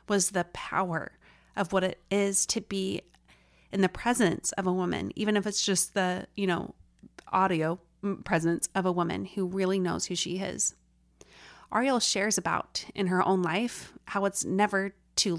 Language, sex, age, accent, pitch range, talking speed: English, female, 30-49, American, 170-200 Hz, 170 wpm